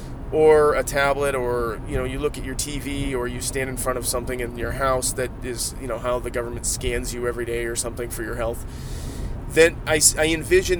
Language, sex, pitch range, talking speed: English, male, 120-155 Hz, 230 wpm